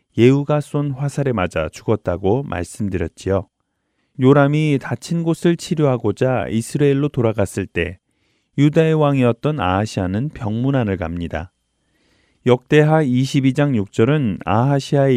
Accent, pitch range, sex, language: native, 100-145 Hz, male, Korean